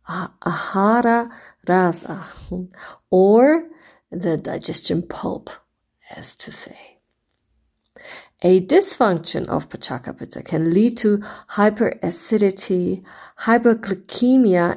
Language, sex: English, female